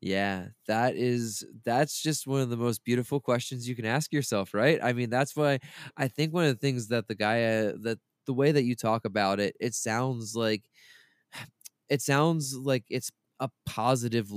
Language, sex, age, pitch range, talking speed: English, male, 20-39, 105-125 Hz, 190 wpm